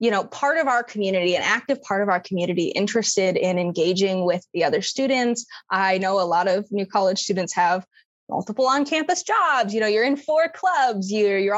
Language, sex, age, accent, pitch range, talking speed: English, female, 20-39, American, 190-240 Hz, 205 wpm